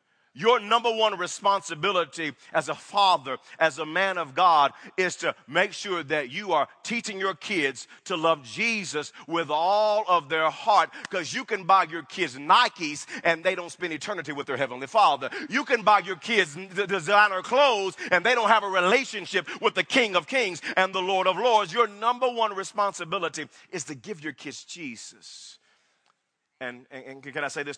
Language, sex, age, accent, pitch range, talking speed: English, male, 40-59, American, 145-205 Hz, 185 wpm